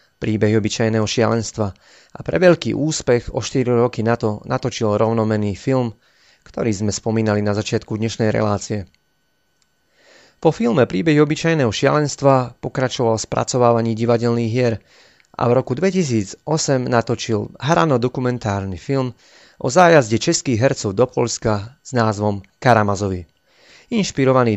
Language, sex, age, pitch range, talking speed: Slovak, male, 30-49, 105-130 Hz, 115 wpm